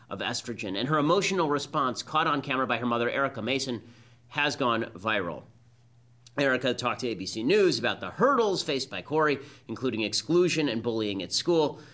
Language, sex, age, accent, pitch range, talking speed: English, male, 30-49, American, 120-160 Hz, 170 wpm